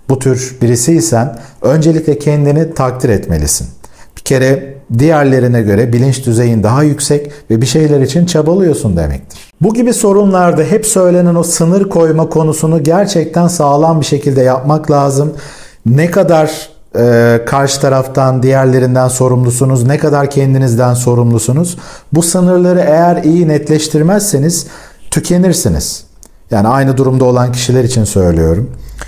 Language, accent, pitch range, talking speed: Turkish, native, 125-155 Hz, 125 wpm